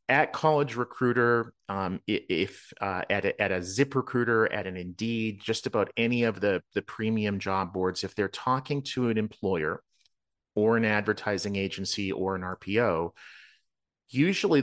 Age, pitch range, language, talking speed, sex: 40-59, 100-125 Hz, English, 155 wpm, male